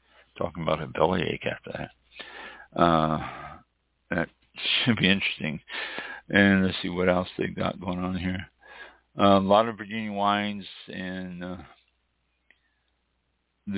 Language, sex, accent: English, male, American